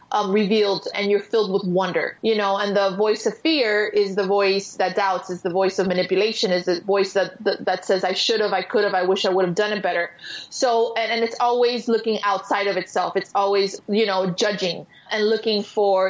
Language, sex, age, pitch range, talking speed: English, female, 20-39, 195-225 Hz, 230 wpm